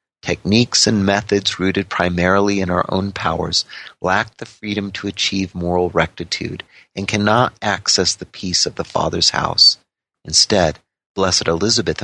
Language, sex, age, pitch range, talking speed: English, male, 40-59, 85-105 Hz, 140 wpm